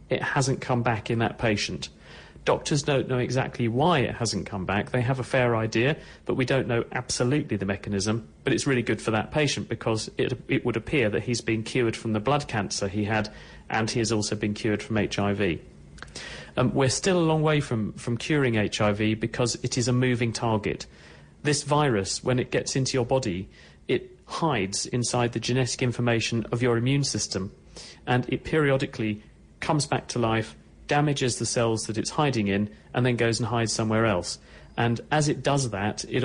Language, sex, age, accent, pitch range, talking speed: English, male, 40-59, British, 105-130 Hz, 195 wpm